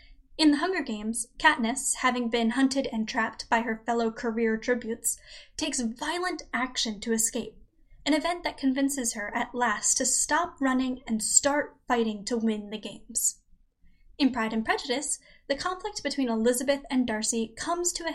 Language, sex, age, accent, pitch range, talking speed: English, female, 10-29, American, 230-285 Hz, 165 wpm